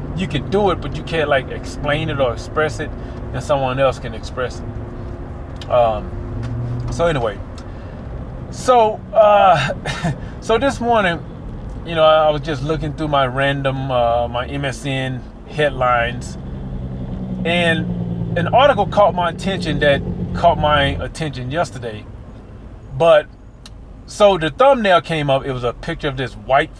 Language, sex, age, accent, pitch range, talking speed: English, male, 20-39, American, 115-165 Hz, 145 wpm